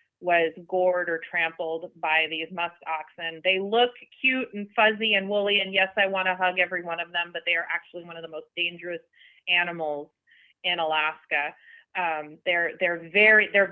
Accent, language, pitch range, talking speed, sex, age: American, English, 160-195 Hz, 175 wpm, female, 30-49